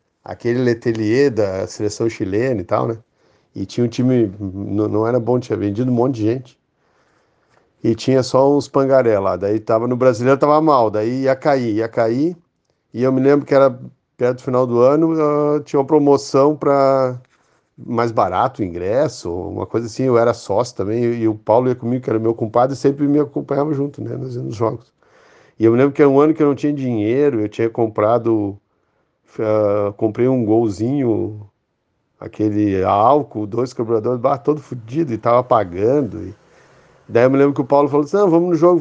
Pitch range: 115-140 Hz